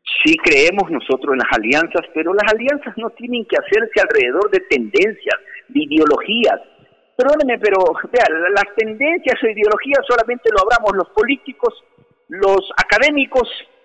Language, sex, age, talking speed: Spanish, male, 50-69, 140 wpm